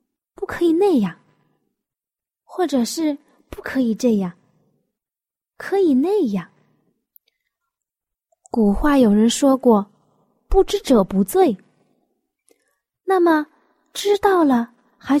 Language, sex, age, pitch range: Chinese, female, 20-39, 220-335 Hz